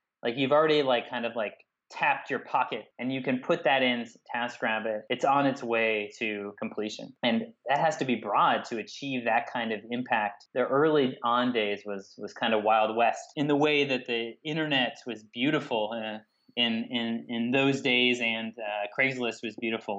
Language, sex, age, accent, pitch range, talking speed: English, male, 30-49, American, 110-135 Hz, 190 wpm